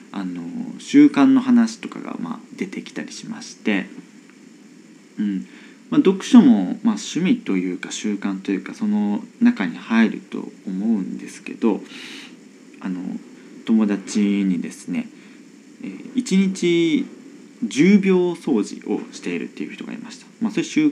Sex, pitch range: male, 210-265 Hz